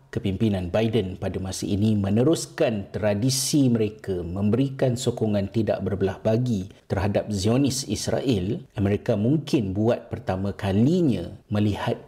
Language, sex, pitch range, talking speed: Malay, male, 100-120 Hz, 110 wpm